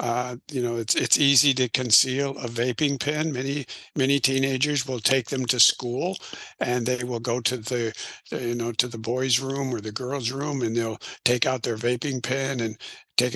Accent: American